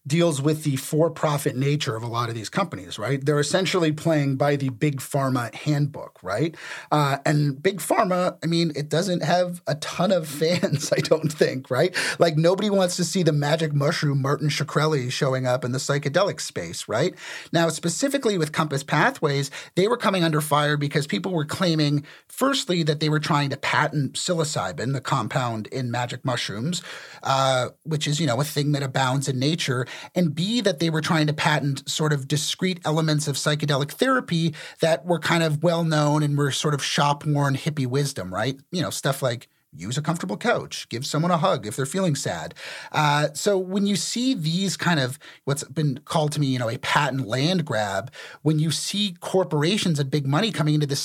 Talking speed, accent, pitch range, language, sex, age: 195 wpm, American, 140-170 Hz, English, male, 40-59